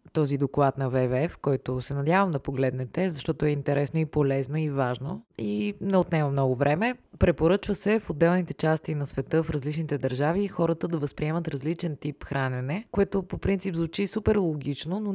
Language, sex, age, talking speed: Bulgarian, female, 20-39, 175 wpm